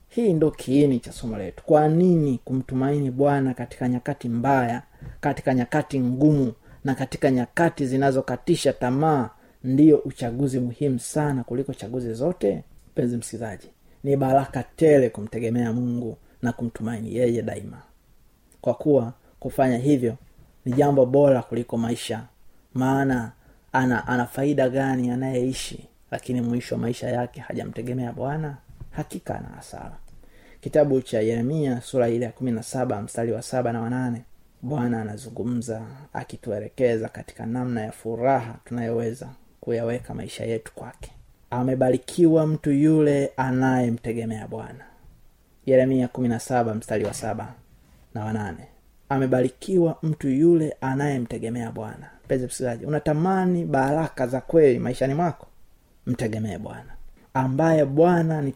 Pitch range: 115-140 Hz